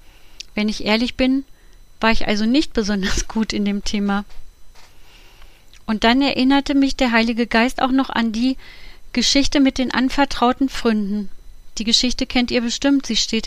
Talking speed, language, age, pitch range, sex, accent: 160 wpm, German, 30-49, 215-255 Hz, female, German